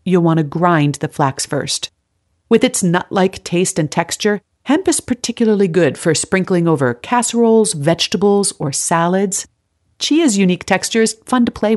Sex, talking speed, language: female, 160 wpm, English